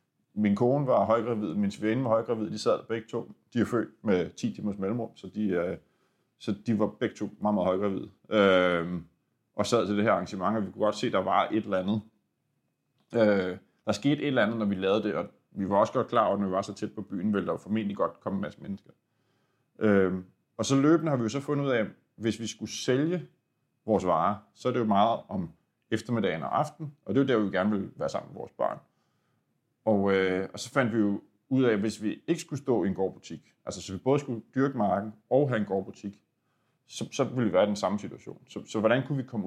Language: Danish